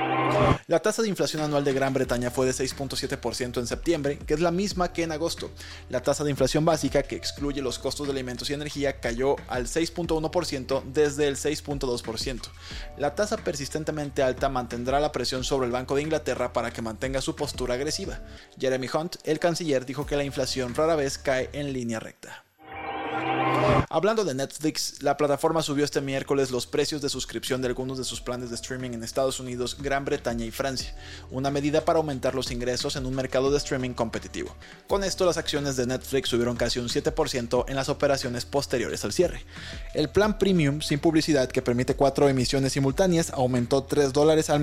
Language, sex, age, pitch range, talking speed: Spanish, male, 20-39, 125-150 Hz, 185 wpm